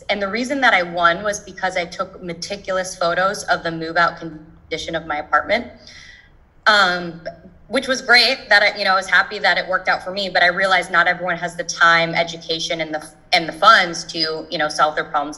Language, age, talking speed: English, 20-39, 220 wpm